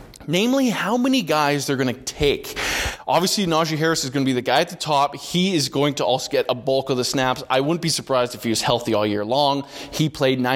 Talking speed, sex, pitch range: 250 wpm, male, 125-155 Hz